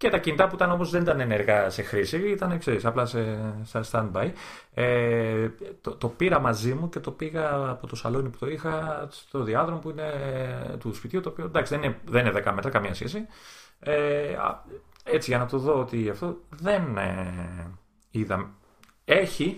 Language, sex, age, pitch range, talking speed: Greek, male, 30-49, 100-150 Hz, 180 wpm